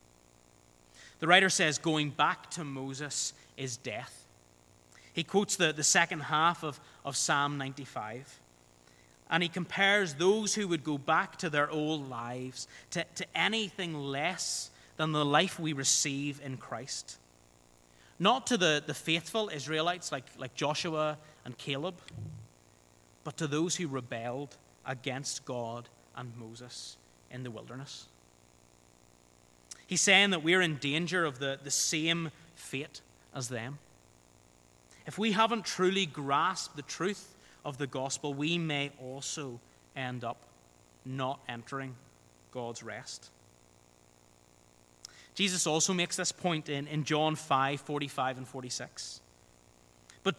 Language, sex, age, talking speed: English, male, 30-49, 130 wpm